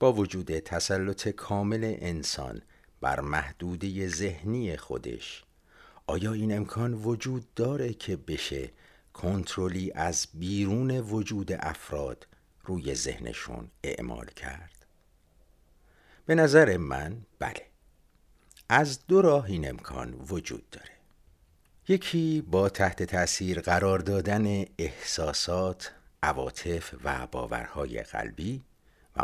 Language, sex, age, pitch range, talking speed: Persian, male, 60-79, 75-110 Hz, 100 wpm